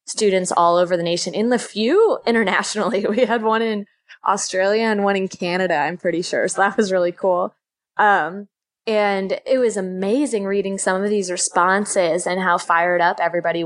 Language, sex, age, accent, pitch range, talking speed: English, female, 20-39, American, 180-220 Hz, 180 wpm